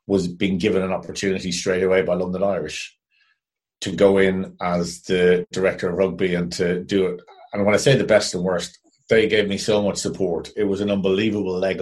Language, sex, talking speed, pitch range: English, male, 210 wpm, 90-100 Hz